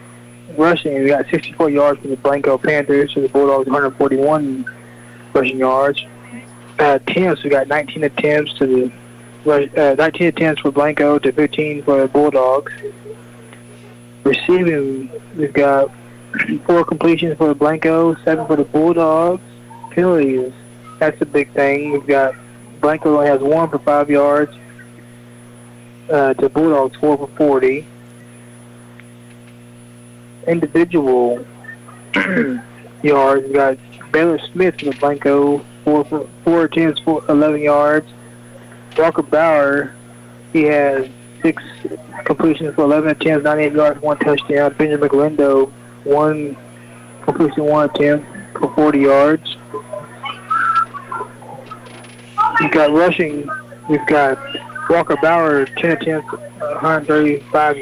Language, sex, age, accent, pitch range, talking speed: English, male, 20-39, American, 120-155 Hz, 120 wpm